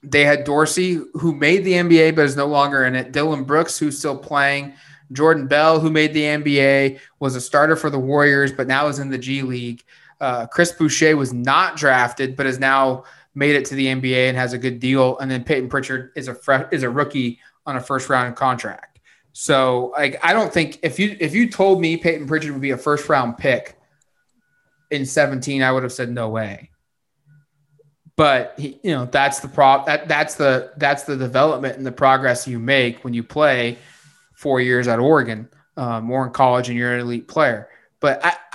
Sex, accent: male, American